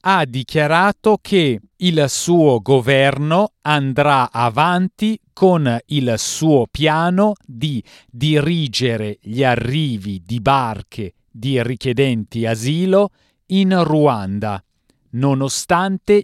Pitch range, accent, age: 115-165 Hz, native, 40-59